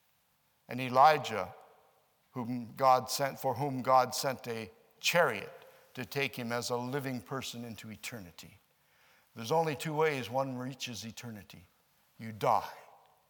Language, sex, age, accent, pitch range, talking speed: English, male, 60-79, American, 130-175 Hz, 130 wpm